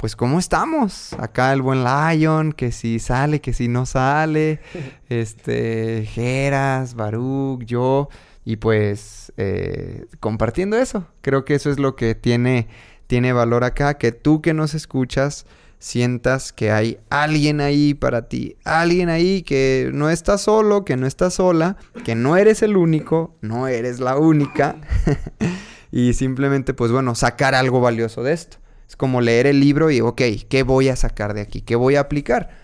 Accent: Mexican